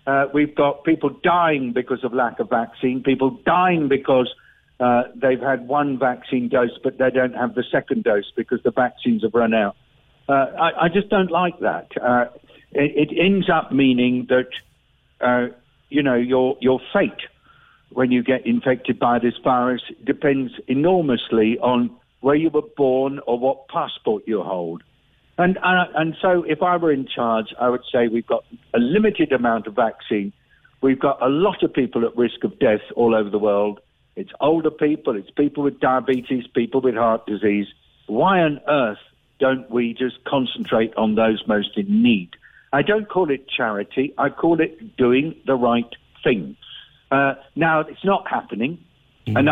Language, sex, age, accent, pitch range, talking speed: English, male, 50-69, British, 120-150 Hz, 175 wpm